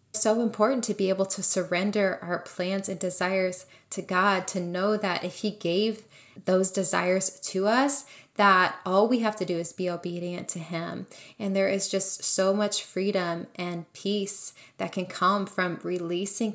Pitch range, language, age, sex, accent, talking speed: 175-200 Hz, English, 20-39, female, American, 175 wpm